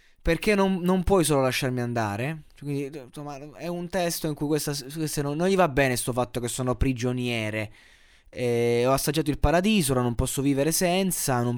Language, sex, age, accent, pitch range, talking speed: Italian, male, 20-39, native, 125-165 Hz, 185 wpm